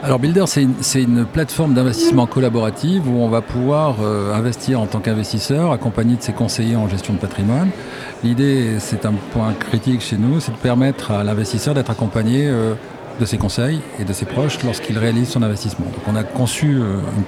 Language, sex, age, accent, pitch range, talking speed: French, male, 50-69, French, 105-130 Hz, 200 wpm